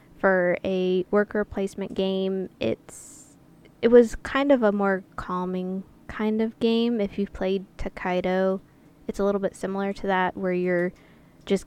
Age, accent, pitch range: 20-39, American, 175-195 Hz